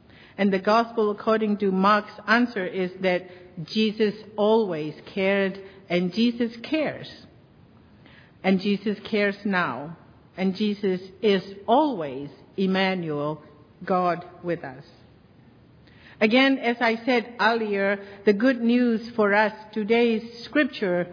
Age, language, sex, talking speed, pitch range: 50-69, English, female, 110 wpm, 180-225 Hz